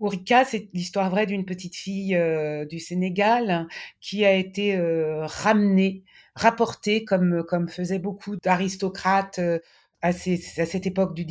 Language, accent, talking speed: French, French, 150 wpm